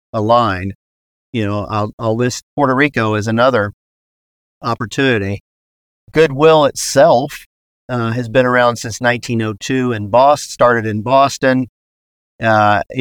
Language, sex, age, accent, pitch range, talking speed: English, male, 50-69, American, 105-125 Hz, 120 wpm